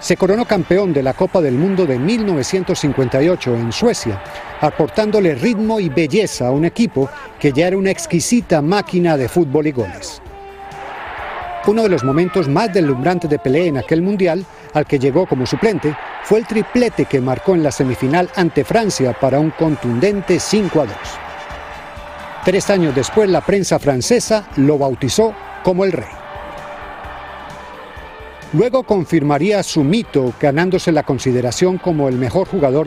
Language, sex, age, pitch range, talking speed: Spanish, male, 50-69, 140-195 Hz, 150 wpm